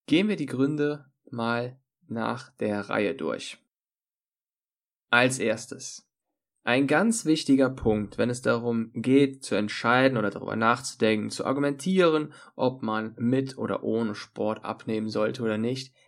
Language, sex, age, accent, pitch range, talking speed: German, male, 20-39, German, 115-140 Hz, 135 wpm